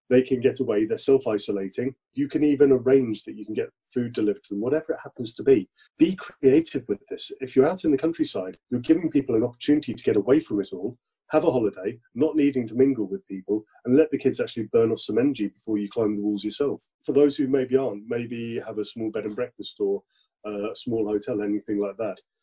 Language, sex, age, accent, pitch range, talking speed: English, male, 30-49, British, 110-145 Hz, 235 wpm